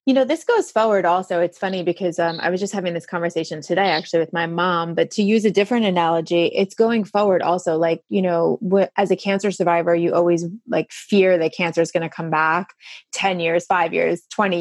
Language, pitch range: English, 170-205 Hz